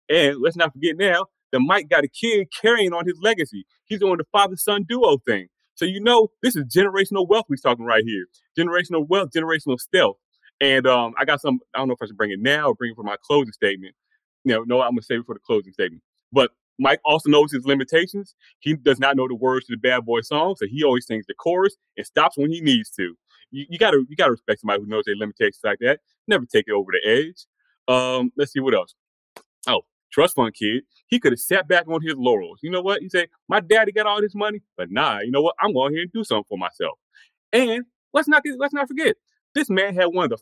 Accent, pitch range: American, 135-220 Hz